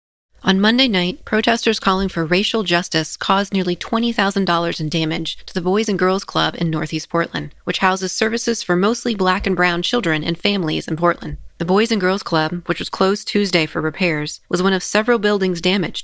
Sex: female